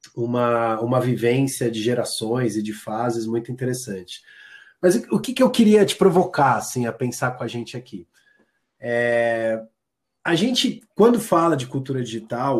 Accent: Brazilian